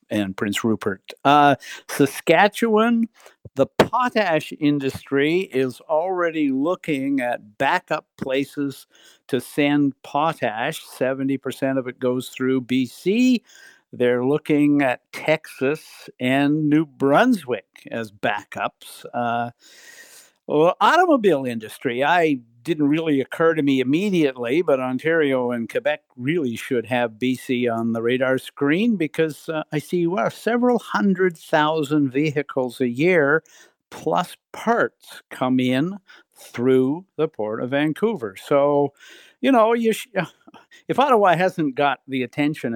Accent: American